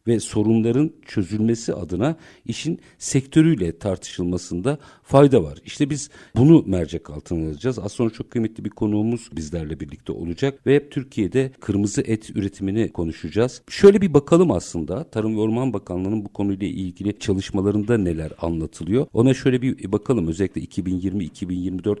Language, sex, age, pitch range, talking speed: Turkish, male, 50-69, 95-125 Hz, 135 wpm